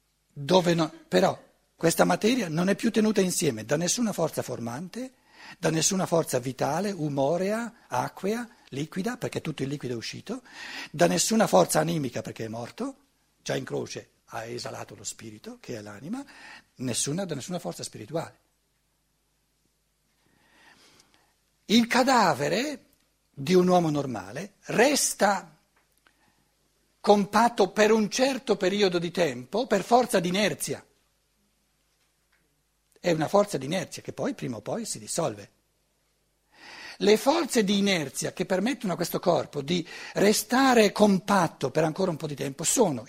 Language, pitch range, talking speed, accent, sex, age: Italian, 150-230 Hz, 135 wpm, native, male, 60-79